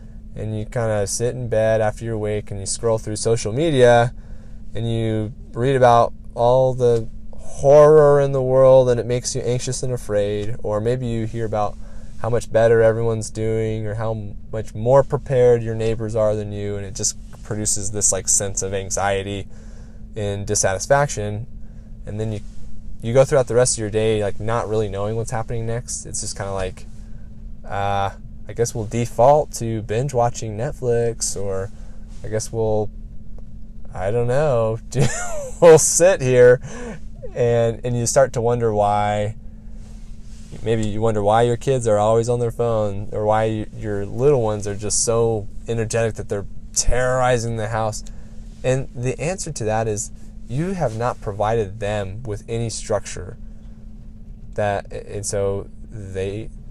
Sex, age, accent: male, 10-29, American